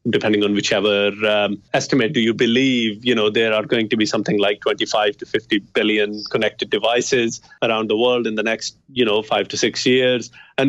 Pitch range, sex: 105-135 Hz, male